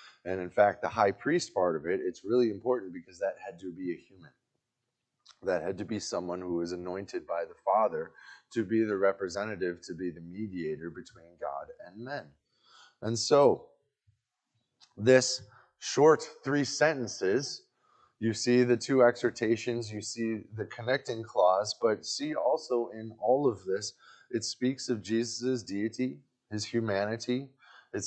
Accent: American